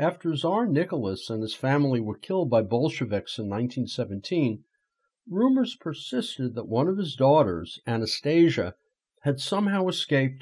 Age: 50-69